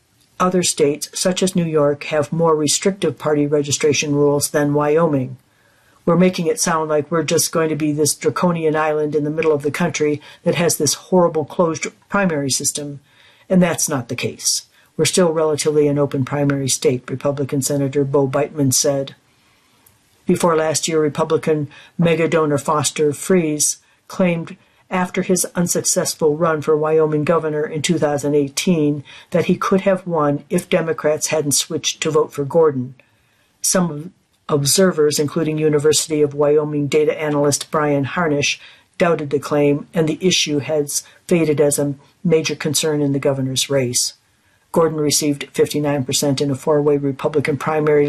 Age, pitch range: 60-79, 145-160 Hz